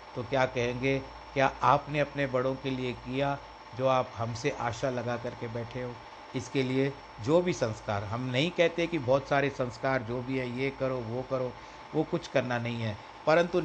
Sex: male